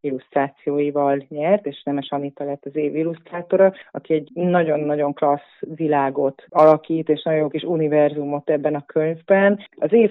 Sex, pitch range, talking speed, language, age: female, 145-175 Hz, 150 wpm, Hungarian, 30-49